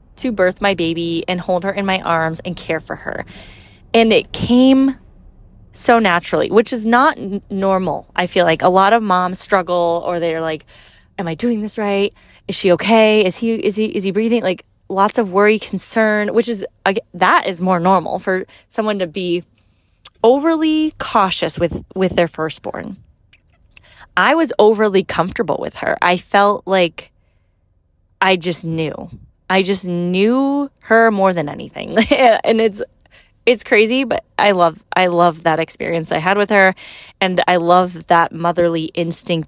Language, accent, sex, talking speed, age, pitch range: English, American, female, 165 wpm, 20-39, 170-220 Hz